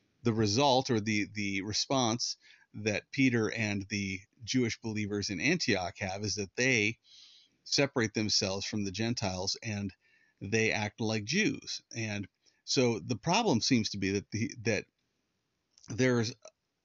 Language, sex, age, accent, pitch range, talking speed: English, male, 40-59, American, 95-120 Hz, 140 wpm